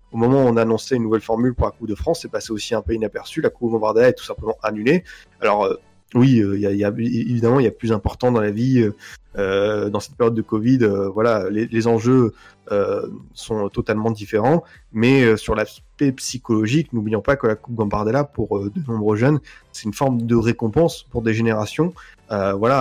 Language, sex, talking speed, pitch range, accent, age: French, male, 215 wpm, 105-125 Hz, French, 20-39